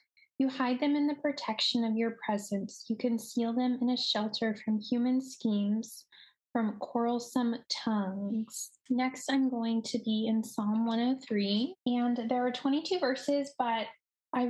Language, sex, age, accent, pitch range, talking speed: English, female, 10-29, American, 215-255 Hz, 150 wpm